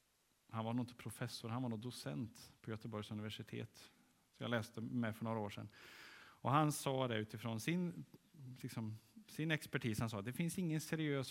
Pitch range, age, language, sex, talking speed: 110-145 Hz, 30-49, Swedish, male, 190 wpm